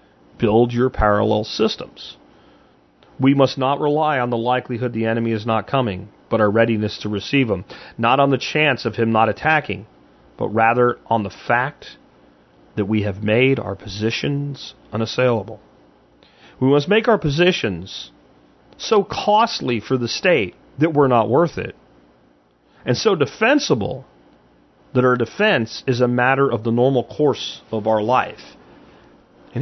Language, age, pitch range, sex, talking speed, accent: English, 40-59, 95-140 Hz, male, 150 wpm, American